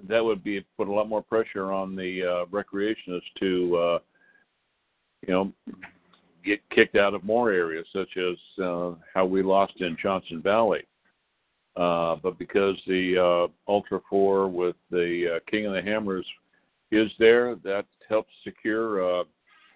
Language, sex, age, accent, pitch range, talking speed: English, male, 60-79, American, 90-105 Hz, 155 wpm